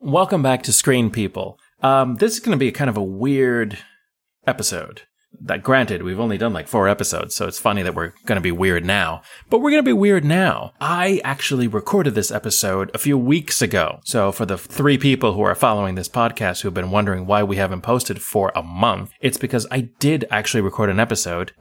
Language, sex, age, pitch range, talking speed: English, male, 30-49, 100-140 Hz, 220 wpm